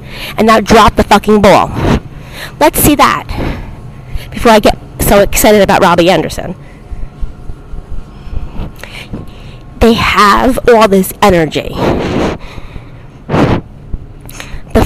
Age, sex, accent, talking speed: 40-59, female, American, 95 wpm